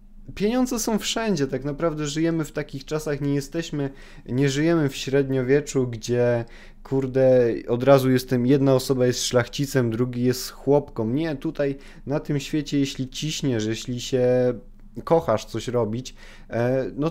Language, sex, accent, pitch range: Polish, male, native, 120-150 Hz